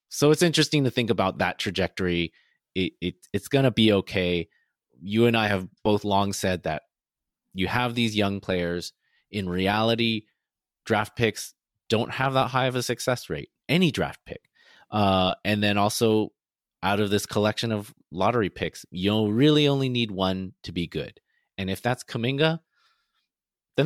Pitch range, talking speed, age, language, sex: 95-120 Hz, 170 wpm, 30-49, English, male